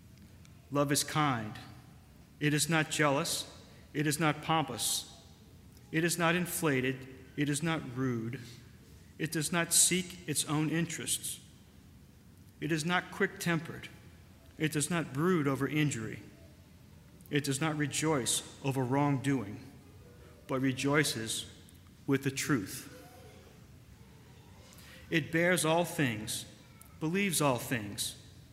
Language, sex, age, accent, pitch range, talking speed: English, male, 50-69, American, 115-160 Hz, 115 wpm